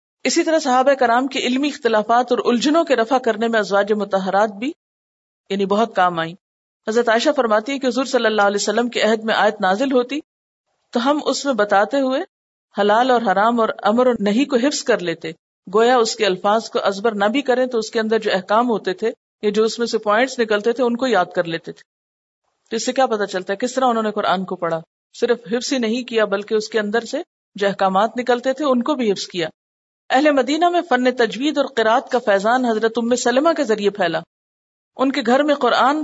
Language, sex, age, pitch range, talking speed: Urdu, female, 50-69, 210-265 Hz, 225 wpm